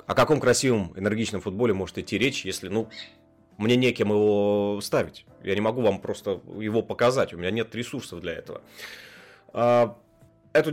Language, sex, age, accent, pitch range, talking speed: Russian, male, 20-39, native, 95-120 Hz, 155 wpm